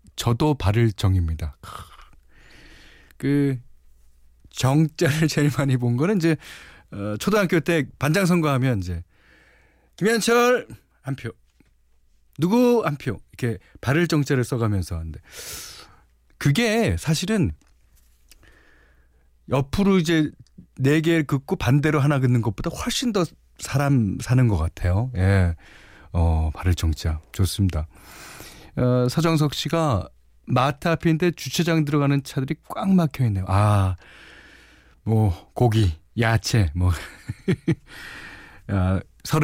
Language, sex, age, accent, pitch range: Korean, male, 40-59, native, 90-150 Hz